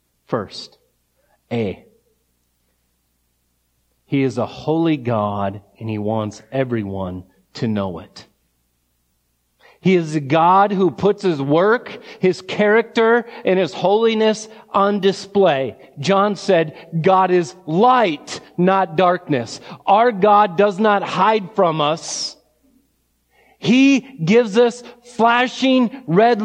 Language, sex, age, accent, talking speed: English, male, 40-59, American, 110 wpm